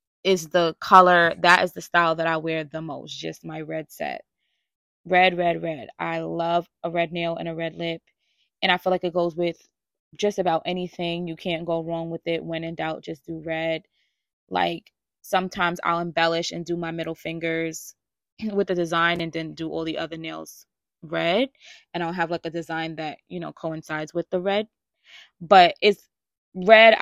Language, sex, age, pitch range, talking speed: English, female, 20-39, 165-185 Hz, 190 wpm